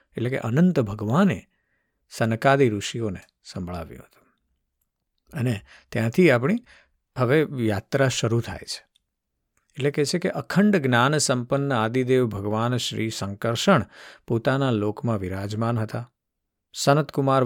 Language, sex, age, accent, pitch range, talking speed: Gujarati, male, 50-69, native, 110-140 Hz, 85 wpm